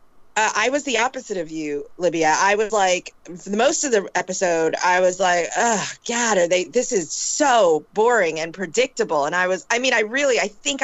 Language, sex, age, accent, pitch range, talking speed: English, female, 30-49, American, 180-255 Hz, 210 wpm